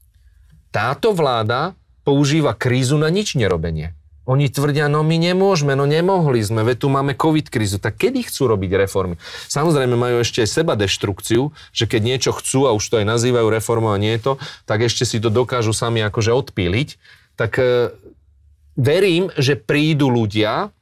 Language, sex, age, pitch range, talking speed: Slovak, male, 30-49, 110-140 Hz, 170 wpm